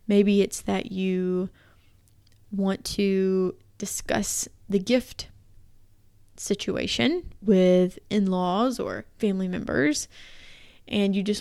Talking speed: 95 wpm